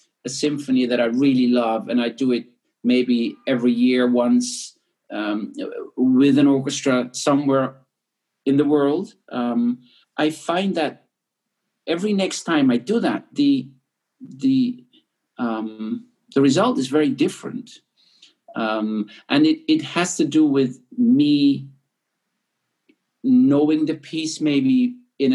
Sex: male